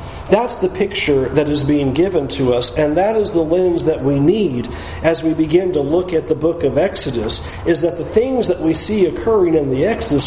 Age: 40-59